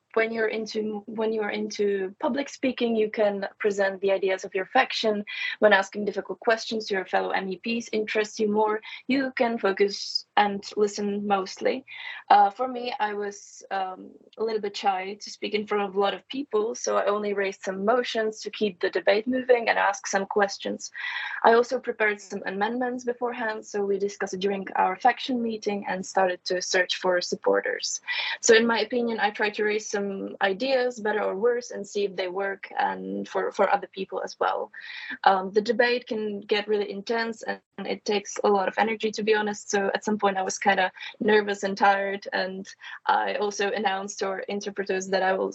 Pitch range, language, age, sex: 195-225 Hz, English, 20-39, female